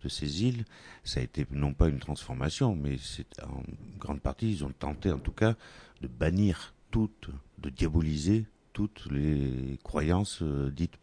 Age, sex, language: 60-79, male, French